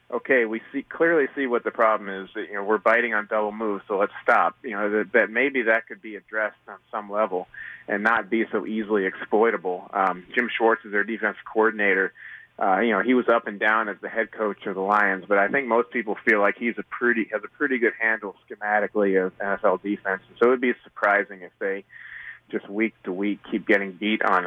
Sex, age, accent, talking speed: male, 30-49, American, 230 wpm